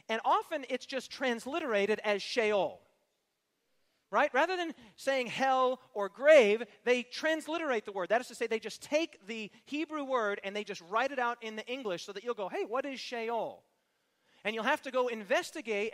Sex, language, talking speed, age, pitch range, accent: male, English, 190 wpm, 40-59, 215-270 Hz, American